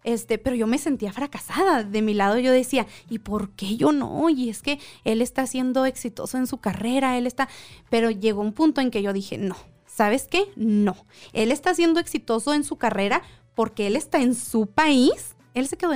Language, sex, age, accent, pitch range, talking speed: Spanish, female, 20-39, Mexican, 220-290 Hz, 210 wpm